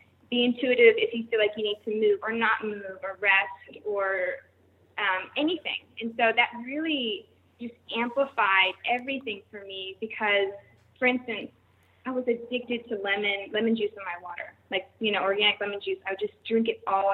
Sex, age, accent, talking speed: female, 20-39, American, 180 wpm